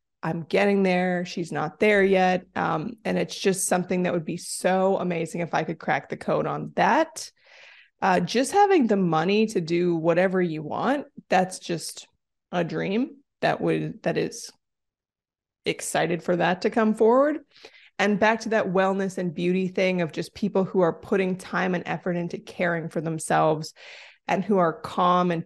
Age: 20-39